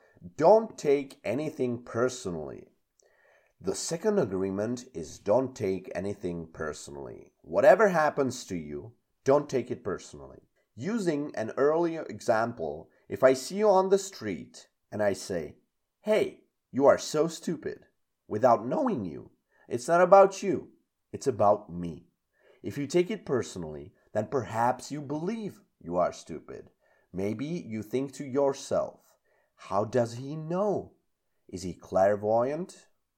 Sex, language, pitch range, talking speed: male, Czech, 95-150 Hz, 130 wpm